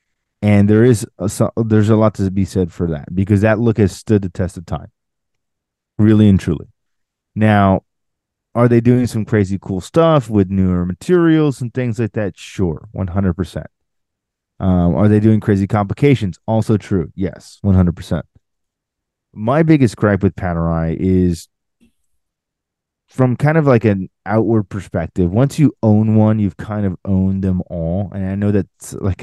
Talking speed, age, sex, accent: 170 wpm, 20-39, male, American